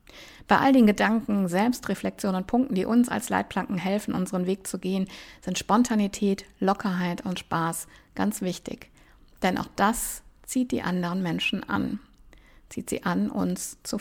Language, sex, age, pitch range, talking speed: German, female, 50-69, 180-220 Hz, 155 wpm